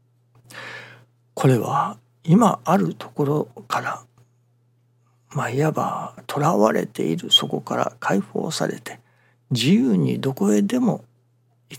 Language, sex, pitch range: Japanese, male, 120-150 Hz